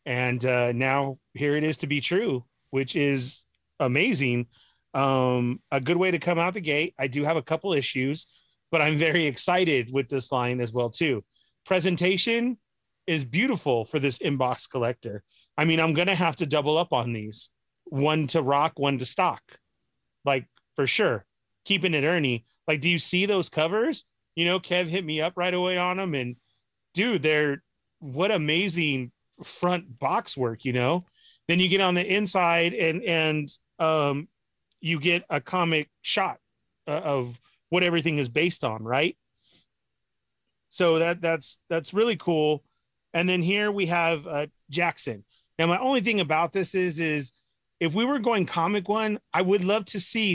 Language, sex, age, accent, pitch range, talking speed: English, male, 30-49, American, 135-180 Hz, 175 wpm